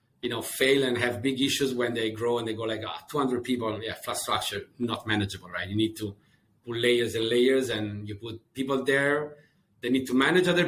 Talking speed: 220 wpm